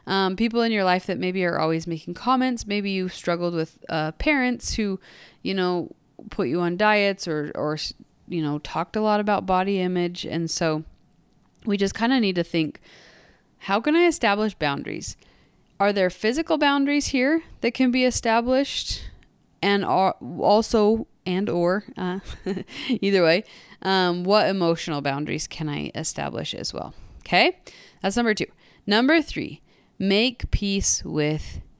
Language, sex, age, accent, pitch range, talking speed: English, female, 20-39, American, 160-215 Hz, 155 wpm